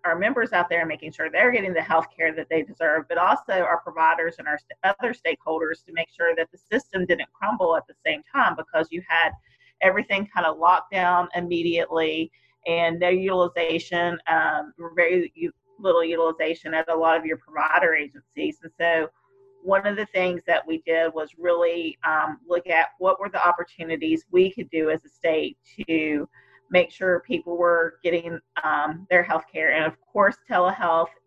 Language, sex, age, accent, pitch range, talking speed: English, female, 40-59, American, 160-185 Hz, 180 wpm